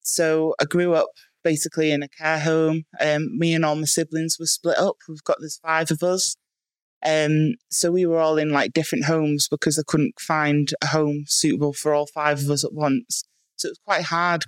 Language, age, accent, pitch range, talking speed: English, 20-39, British, 145-160 Hz, 225 wpm